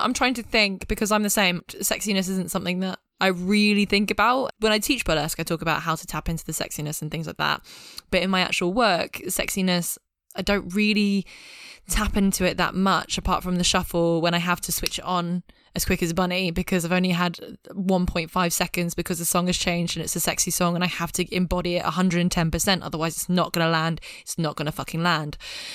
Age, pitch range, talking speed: 10-29, 170-195 Hz, 230 wpm